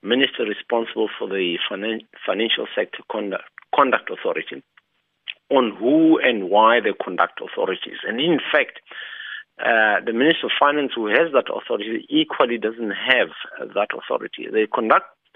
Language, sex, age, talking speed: English, male, 50-69, 135 wpm